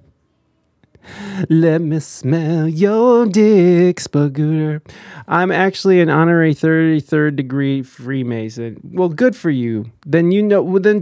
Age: 20-39